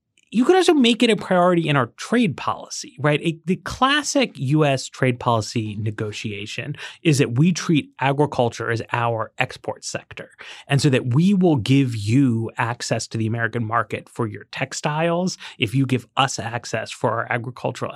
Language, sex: English, male